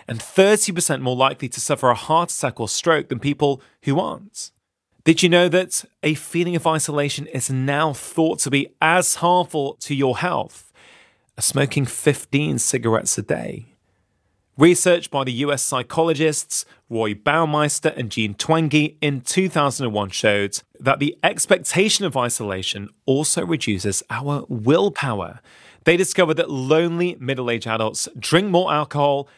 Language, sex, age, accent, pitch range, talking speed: English, male, 30-49, British, 120-165 Hz, 145 wpm